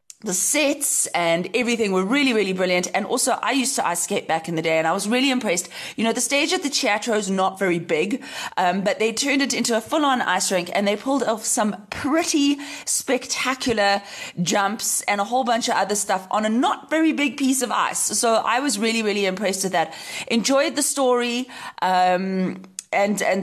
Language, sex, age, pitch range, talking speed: English, female, 30-49, 185-250 Hz, 210 wpm